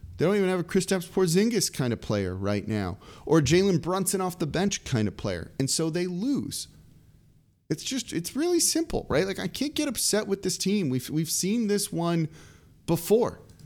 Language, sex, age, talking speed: English, male, 30-49, 200 wpm